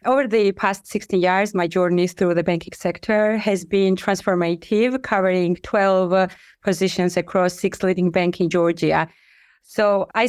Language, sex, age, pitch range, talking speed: English, female, 20-39, 180-205 Hz, 145 wpm